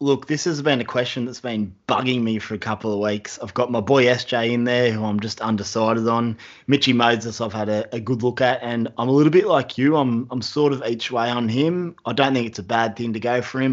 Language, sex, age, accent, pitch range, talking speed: English, male, 30-49, Australian, 105-125 Hz, 270 wpm